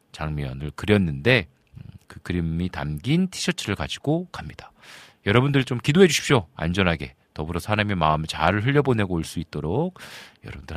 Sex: male